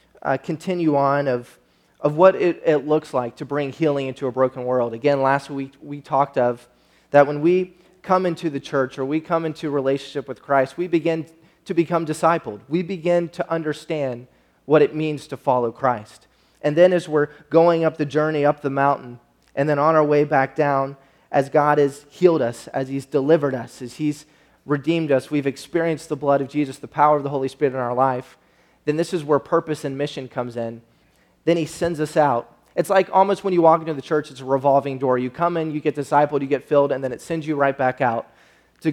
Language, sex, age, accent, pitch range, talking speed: English, male, 30-49, American, 135-155 Hz, 220 wpm